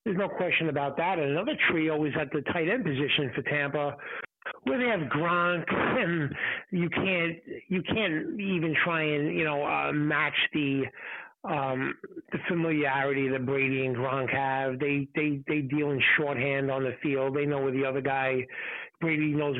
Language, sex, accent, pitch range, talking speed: English, male, American, 140-170 Hz, 180 wpm